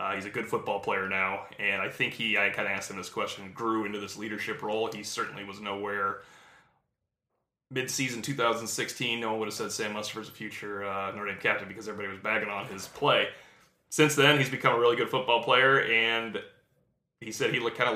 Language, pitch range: English, 105-125 Hz